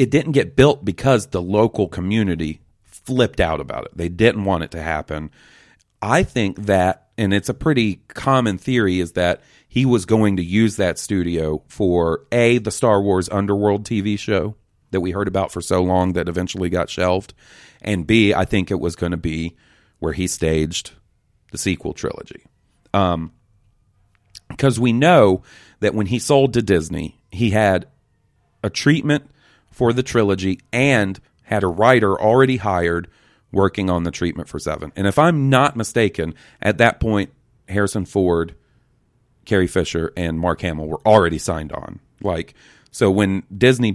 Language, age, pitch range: English, 40-59, 85-110 Hz